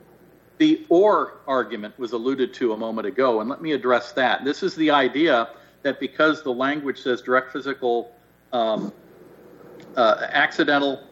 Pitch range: 120-150 Hz